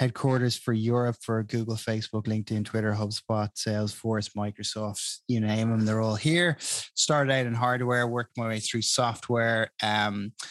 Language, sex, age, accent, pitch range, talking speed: English, male, 20-39, Irish, 110-120 Hz, 155 wpm